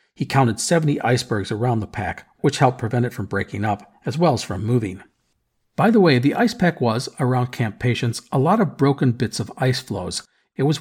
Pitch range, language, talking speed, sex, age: 115-155 Hz, English, 215 wpm, male, 50-69